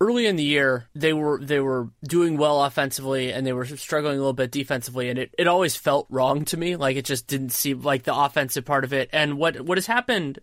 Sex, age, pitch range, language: male, 20-39, 130-160 Hz, English